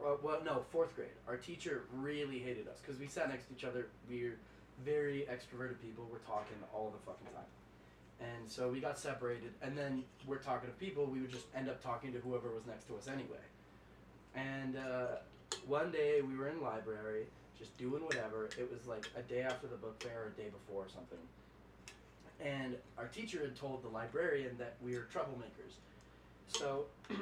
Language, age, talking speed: English, 20-39, 200 wpm